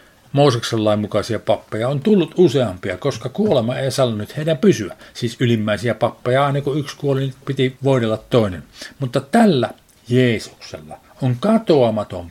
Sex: male